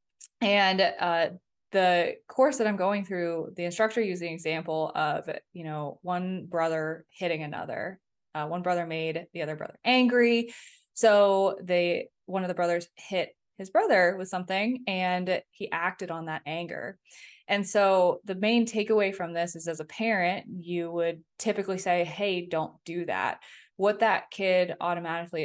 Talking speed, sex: 160 wpm, female